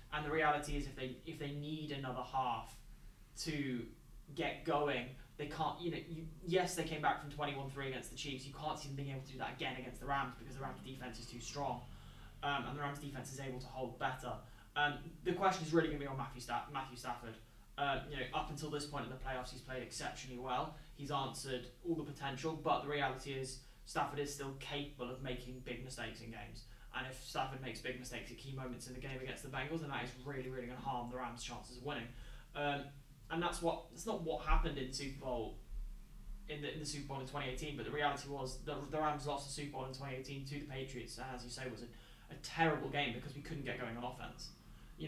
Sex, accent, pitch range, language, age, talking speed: male, British, 125-150 Hz, English, 10-29, 250 wpm